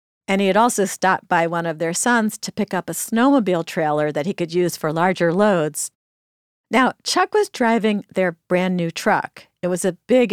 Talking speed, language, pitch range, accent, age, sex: 200 wpm, English, 165-225 Hz, American, 50-69, female